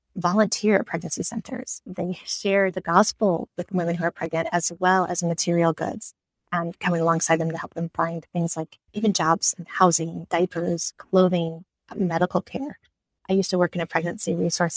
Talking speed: 175 wpm